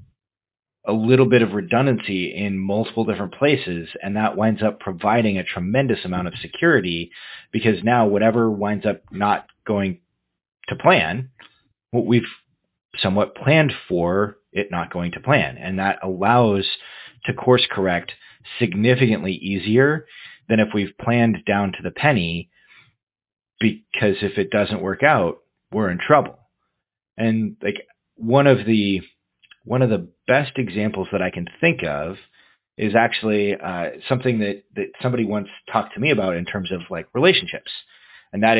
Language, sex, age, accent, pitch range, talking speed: English, male, 30-49, American, 100-120 Hz, 150 wpm